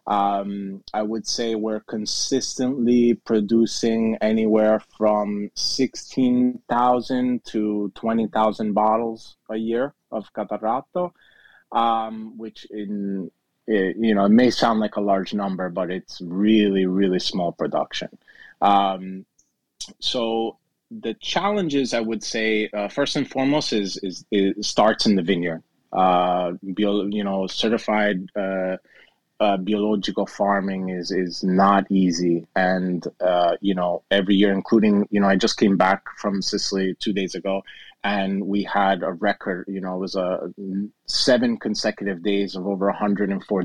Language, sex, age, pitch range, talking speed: English, male, 30-49, 100-115 Hz, 140 wpm